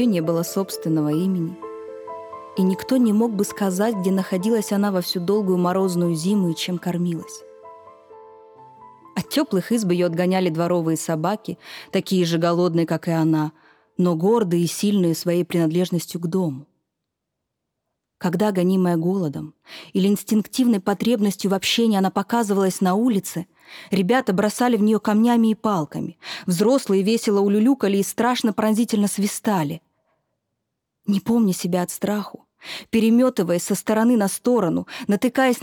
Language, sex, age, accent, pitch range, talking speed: Russian, female, 20-39, native, 175-230 Hz, 135 wpm